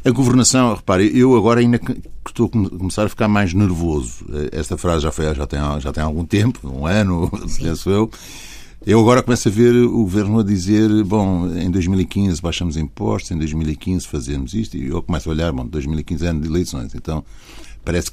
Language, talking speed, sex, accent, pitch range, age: Portuguese, 195 wpm, male, Brazilian, 80-110 Hz, 60-79